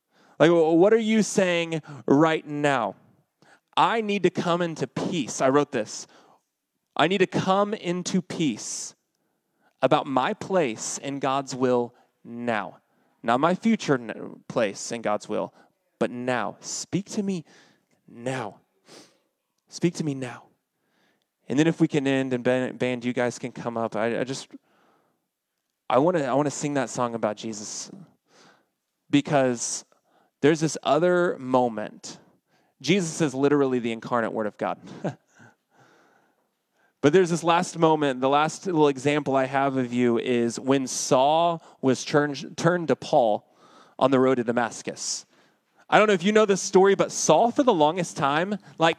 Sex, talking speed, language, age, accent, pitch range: male, 150 wpm, English, 20-39, American, 125-180 Hz